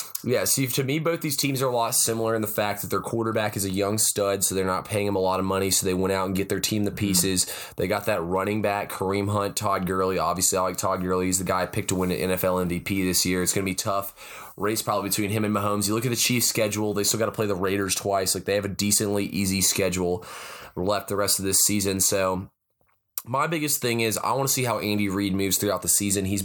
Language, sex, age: English, male, 20-39